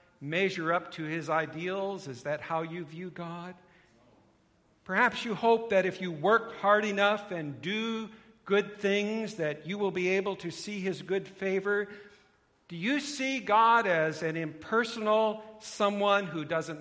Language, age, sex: English, 60-79, male